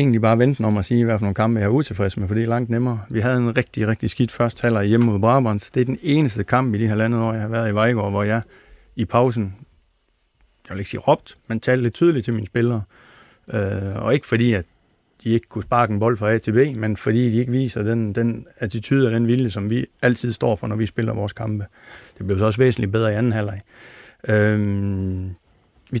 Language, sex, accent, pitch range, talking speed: Danish, male, native, 105-120 Hz, 250 wpm